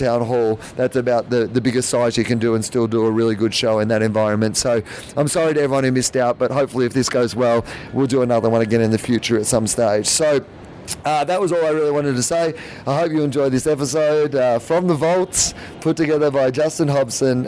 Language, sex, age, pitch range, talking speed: English, male, 30-49, 120-155 Hz, 245 wpm